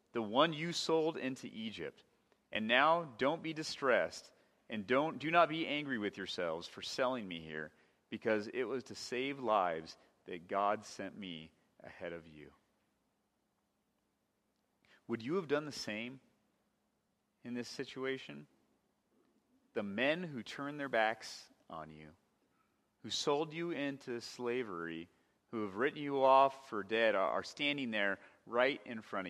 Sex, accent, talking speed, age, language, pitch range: male, American, 145 wpm, 30-49, English, 100-145 Hz